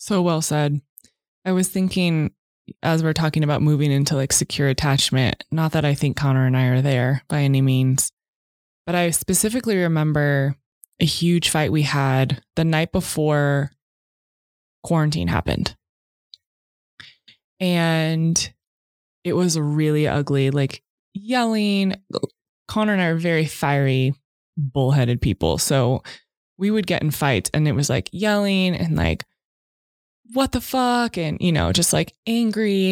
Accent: American